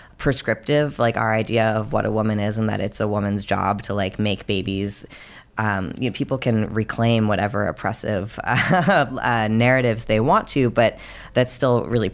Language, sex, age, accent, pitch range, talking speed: English, female, 20-39, American, 105-120 Hz, 185 wpm